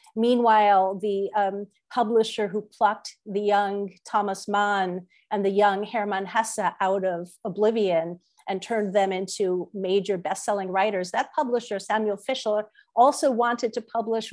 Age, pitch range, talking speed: 50-69, 190-230 Hz, 140 wpm